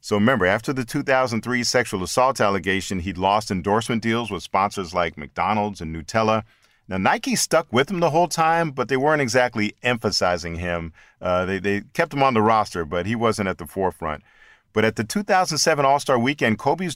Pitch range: 105-135 Hz